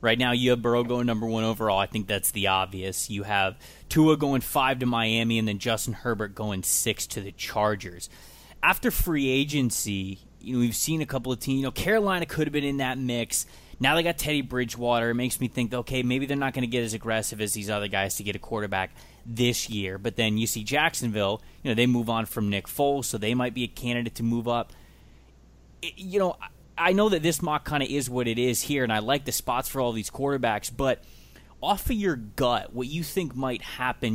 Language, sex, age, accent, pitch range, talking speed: English, male, 20-39, American, 110-135 Hz, 235 wpm